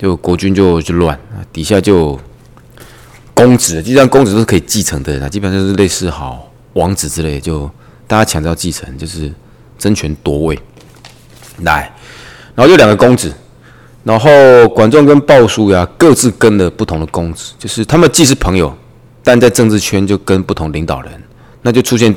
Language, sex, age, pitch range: Chinese, male, 20-39, 80-110 Hz